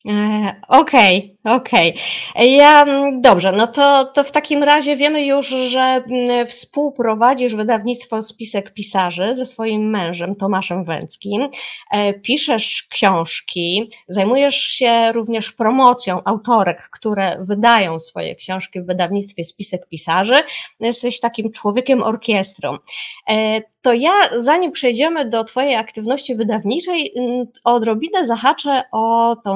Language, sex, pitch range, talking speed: Polish, female, 205-260 Hz, 110 wpm